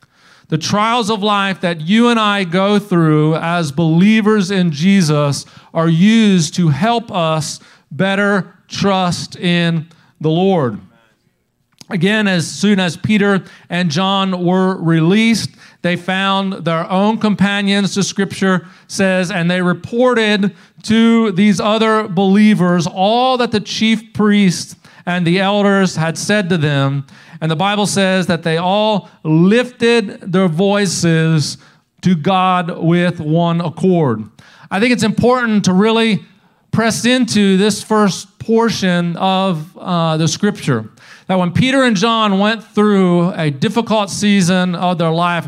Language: English